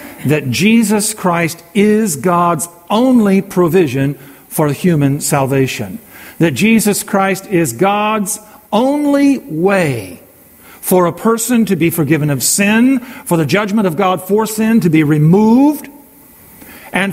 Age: 50-69